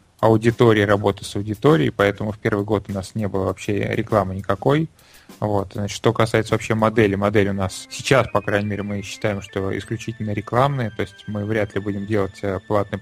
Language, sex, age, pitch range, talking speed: Russian, male, 20-39, 100-115 Hz, 190 wpm